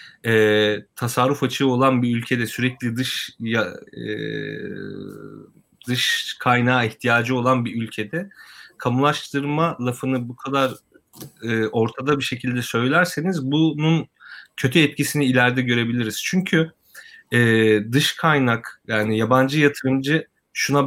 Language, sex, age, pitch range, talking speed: Turkish, male, 30-49, 120-165 Hz, 110 wpm